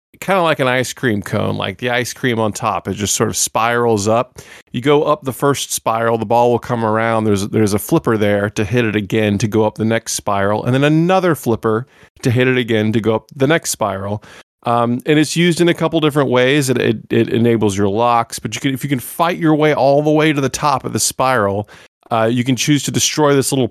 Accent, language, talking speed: American, English, 255 wpm